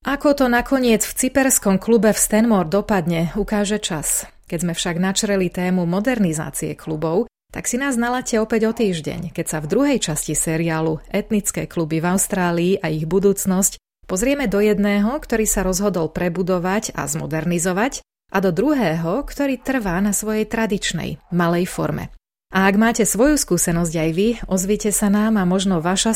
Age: 30-49